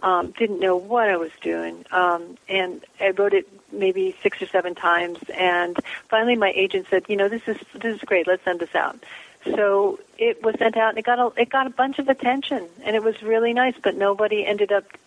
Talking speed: 225 wpm